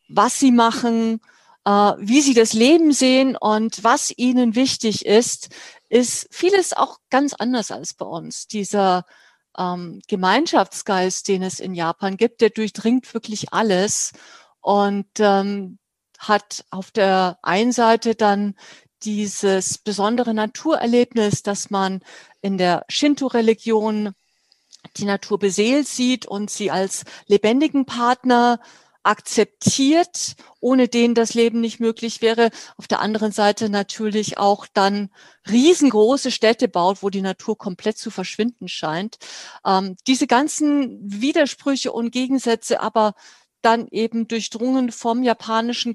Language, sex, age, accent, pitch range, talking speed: German, female, 50-69, German, 200-240 Hz, 120 wpm